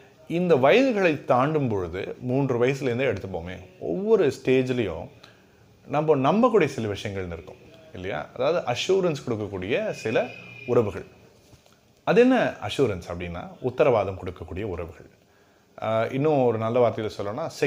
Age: 30-49